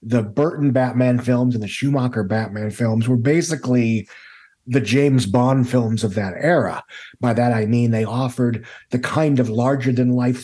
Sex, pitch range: male, 115-140 Hz